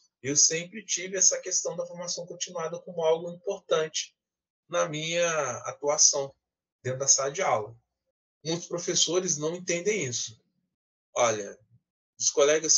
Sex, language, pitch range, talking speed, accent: male, Portuguese, 130-185 Hz, 125 wpm, Brazilian